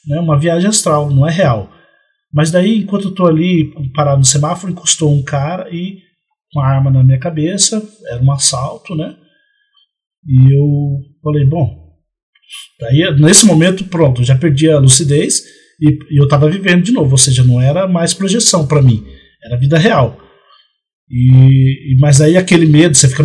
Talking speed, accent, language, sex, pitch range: 170 wpm, Brazilian, Portuguese, male, 140-180 Hz